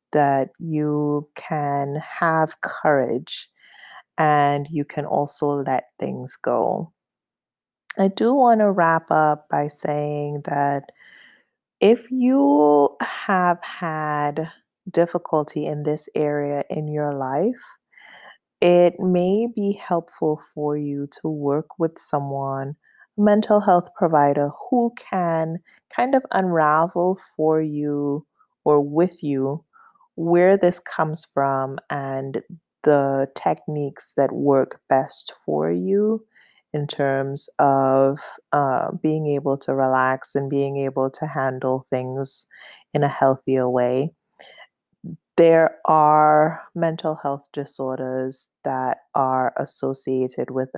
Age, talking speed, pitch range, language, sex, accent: 20-39, 110 wpm, 135-165 Hz, English, female, American